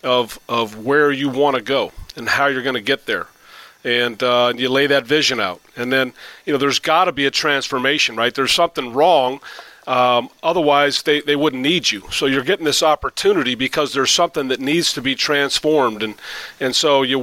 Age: 40-59